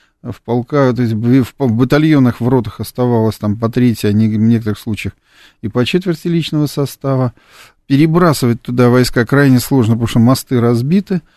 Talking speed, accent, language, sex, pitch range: 135 wpm, native, Russian, male, 110-135 Hz